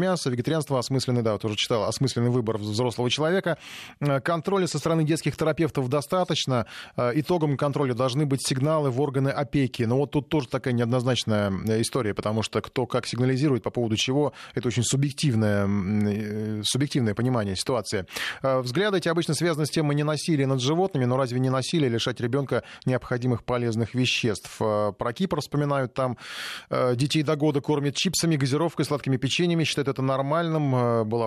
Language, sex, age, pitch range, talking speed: Russian, male, 20-39, 115-150 Hz, 155 wpm